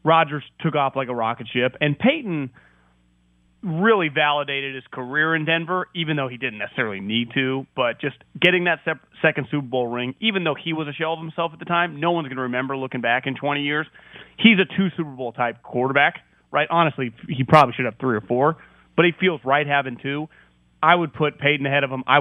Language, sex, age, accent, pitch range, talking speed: English, male, 30-49, American, 130-160 Hz, 220 wpm